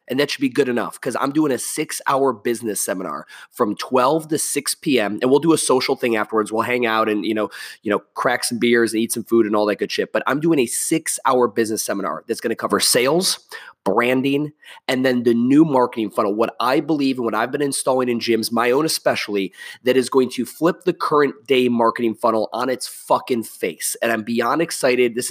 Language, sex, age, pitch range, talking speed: English, male, 20-39, 115-145 Hz, 225 wpm